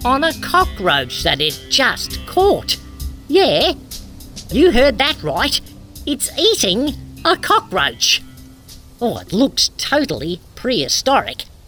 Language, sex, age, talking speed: English, female, 50-69, 110 wpm